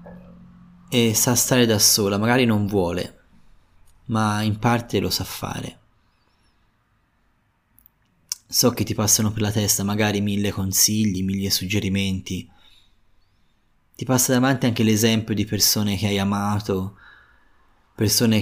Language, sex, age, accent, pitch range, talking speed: Italian, male, 20-39, native, 100-120 Hz, 120 wpm